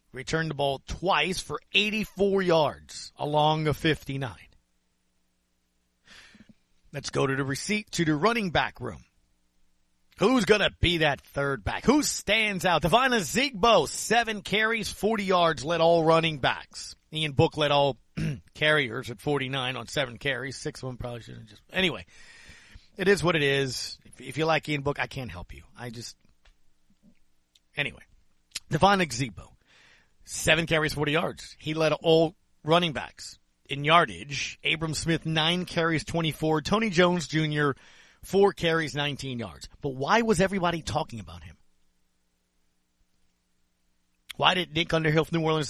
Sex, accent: male, American